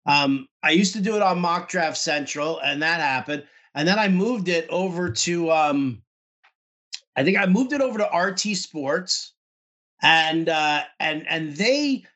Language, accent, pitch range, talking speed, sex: English, American, 150-185 Hz, 170 wpm, male